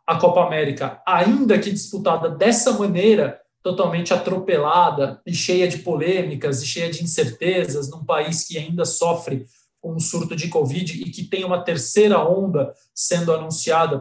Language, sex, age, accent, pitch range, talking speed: Portuguese, male, 20-39, Brazilian, 155-180 Hz, 155 wpm